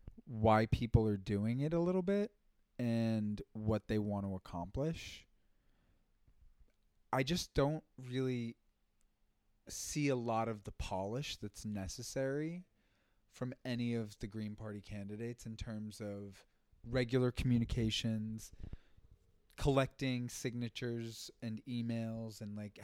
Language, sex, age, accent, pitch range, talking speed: English, male, 30-49, American, 100-125 Hz, 115 wpm